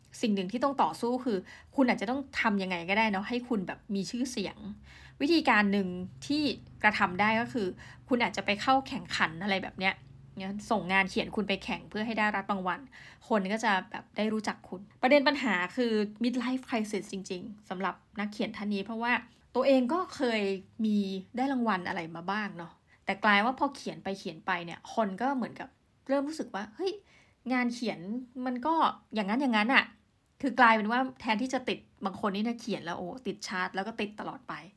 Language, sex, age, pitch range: Thai, female, 20-39, 195-245 Hz